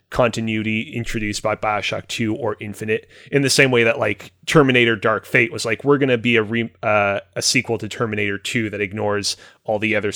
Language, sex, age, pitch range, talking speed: English, male, 30-49, 105-130 Hz, 205 wpm